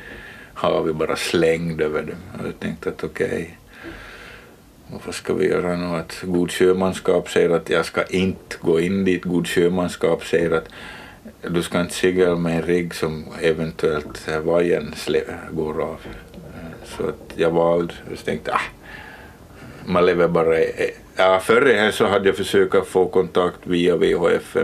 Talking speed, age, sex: 165 wpm, 50-69, male